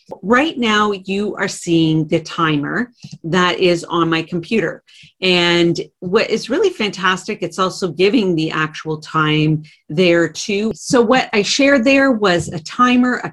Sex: female